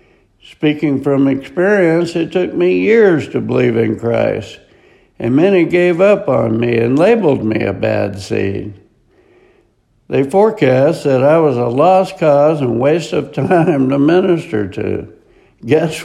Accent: American